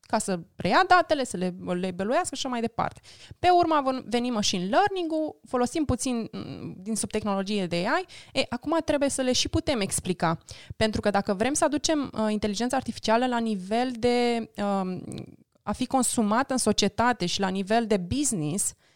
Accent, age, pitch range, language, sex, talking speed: native, 20-39, 200-250 Hz, Romanian, female, 170 wpm